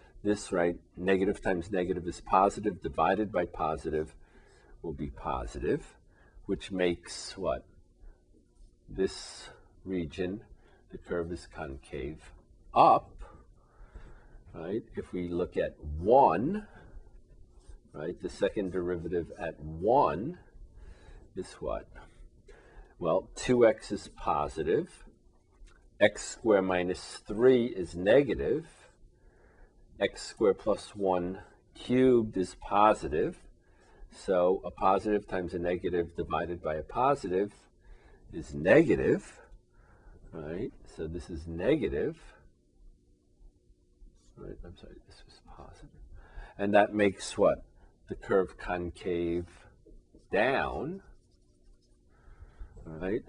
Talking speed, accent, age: 100 wpm, American, 50-69